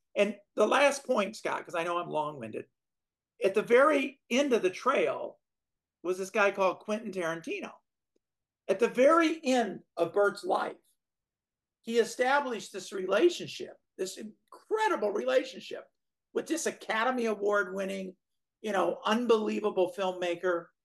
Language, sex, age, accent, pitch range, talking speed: English, male, 50-69, American, 175-225 Hz, 130 wpm